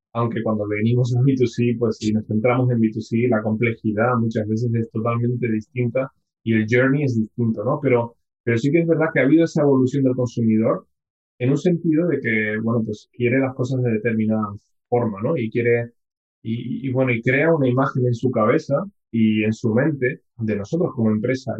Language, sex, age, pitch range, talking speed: Spanish, male, 20-39, 110-130 Hz, 195 wpm